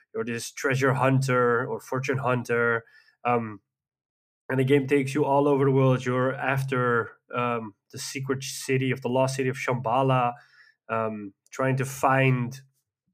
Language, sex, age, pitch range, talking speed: English, male, 20-39, 120-130 Hz, 150 wpm